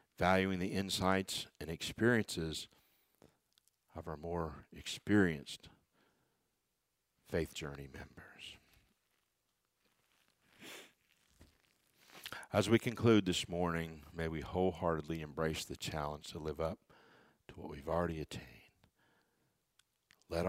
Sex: male